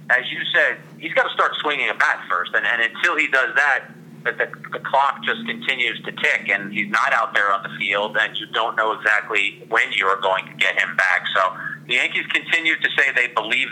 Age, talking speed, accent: 30-49, 230 wpm, American